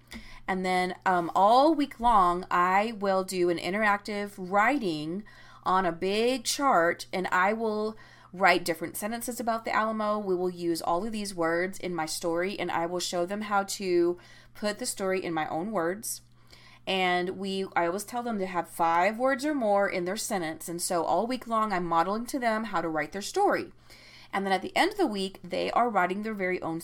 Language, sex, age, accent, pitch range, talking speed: English, female, 30-49, American, 170-210 Hz, 205 wpm